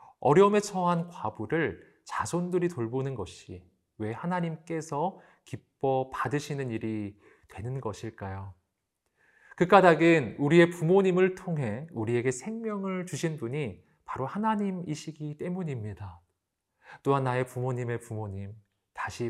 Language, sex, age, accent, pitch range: Korean, male, 40-59, native, 115-165 Hz